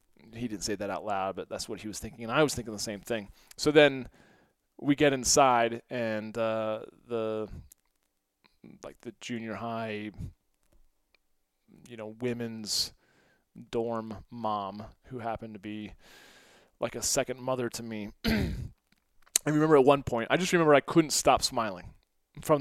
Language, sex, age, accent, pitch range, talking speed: English, male, 20-39, American, 115-165 Hz, 155 wpm